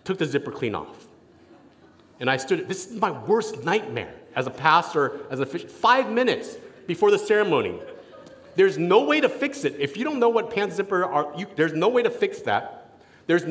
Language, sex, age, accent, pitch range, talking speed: English, male, 40-59, American, 150-205 Hz, 210 wpm